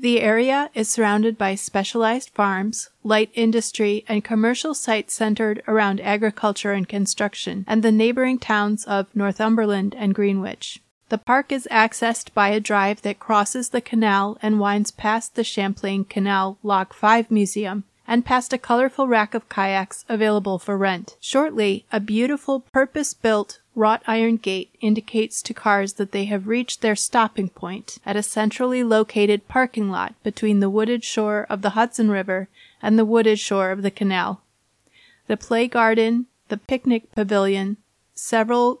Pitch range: 205-230 Hz